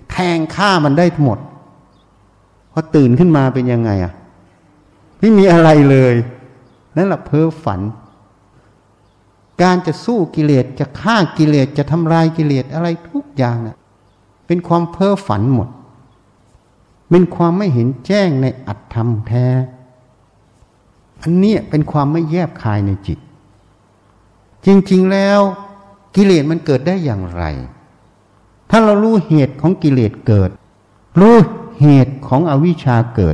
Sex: male